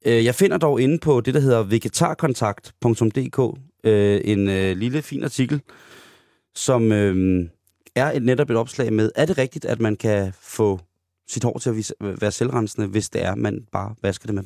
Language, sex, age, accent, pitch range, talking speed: Danish, male, 30-49, native, 110-140 Hz, 170 wpm